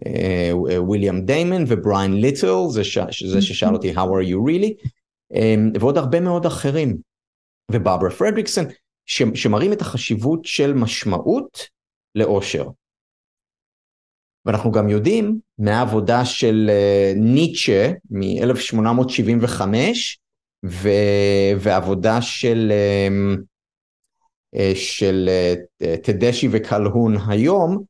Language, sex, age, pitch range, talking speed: Hebrew, male, 30-49, 95-125 Hz, 90 wpm